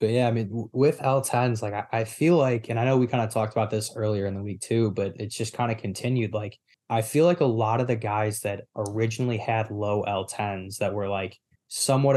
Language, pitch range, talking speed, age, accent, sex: English, 105-125 Hz, 240 wpm, 20-39, American, male